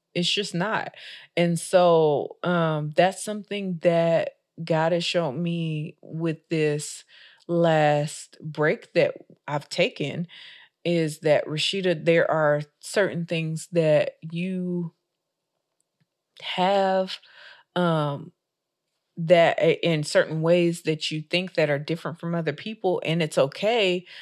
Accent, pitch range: American, 150-180 Hz